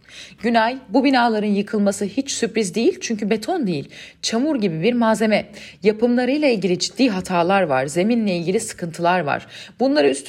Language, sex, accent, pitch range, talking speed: Turkish, female, native, 160-215 Hz, 145 wpm